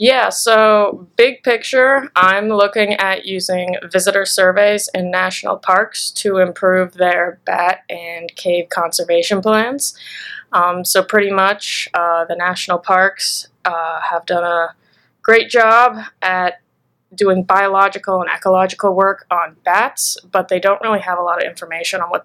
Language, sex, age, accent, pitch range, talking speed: English, female, 20-39, American, 175-200 Hz, 145 wpm